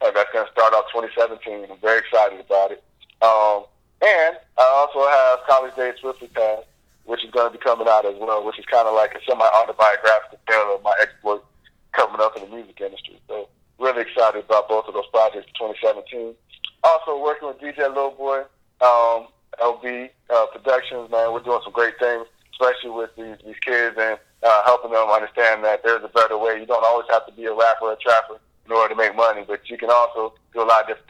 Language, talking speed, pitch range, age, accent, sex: English, 220 wpm, 110-125 Hz, 30-49, American, male